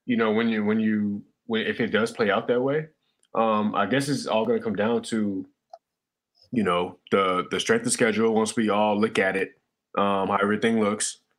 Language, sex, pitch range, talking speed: English, male, 105-135 Hz, 215 wpm